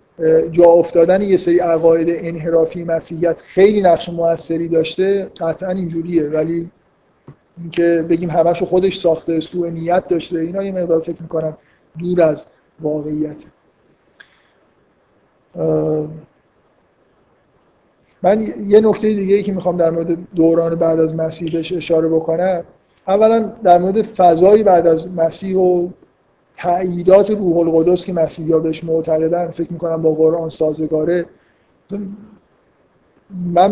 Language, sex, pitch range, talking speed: Persian, male, 160-180 Hz, 120 wpm